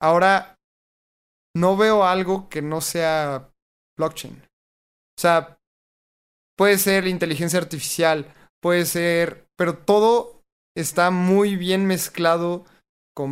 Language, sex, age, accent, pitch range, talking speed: Spanish, male, 20-39, Mexican, 155-180 Hz, 105 wpm